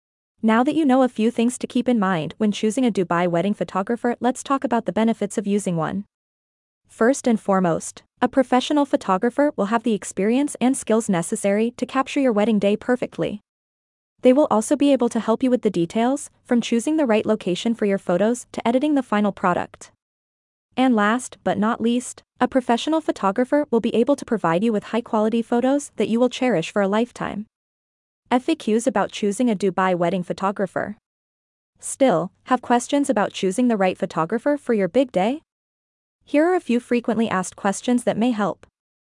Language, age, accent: English, 20-39, American